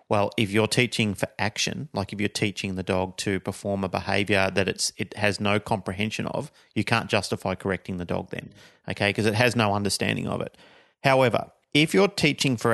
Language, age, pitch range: English, 40-59, 100-120 Hz